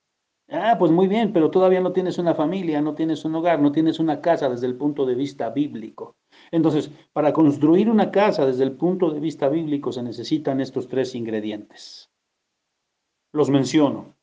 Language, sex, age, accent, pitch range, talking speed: Spanish, male, 50-69, Mexican, 140-175 Hz, 175 wpm